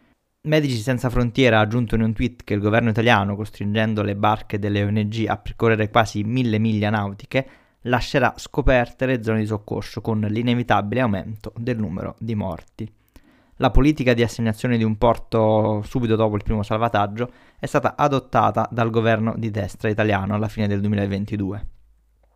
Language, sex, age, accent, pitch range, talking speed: Italian, male, 20-39, native, 105-120 Hz, 160 wpm